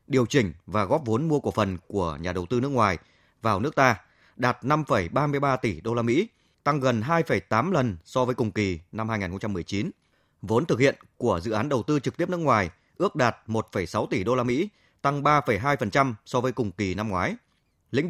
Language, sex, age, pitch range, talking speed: Vietnamese, male, 20-39, 105-145 Hz, 200 wpm